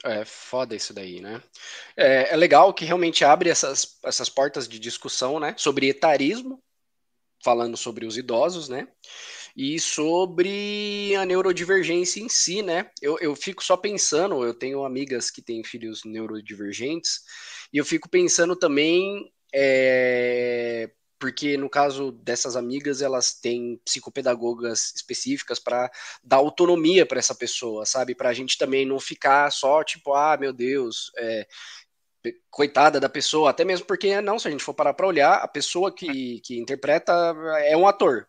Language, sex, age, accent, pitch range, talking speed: Portuguese, male, 20-39, Brazilian, 120-180 Hz, 155 wpm